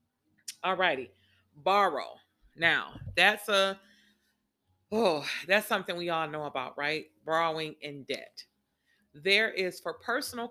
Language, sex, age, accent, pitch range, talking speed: English, female, 40-59, American, 155-195 Hz, 115 wpm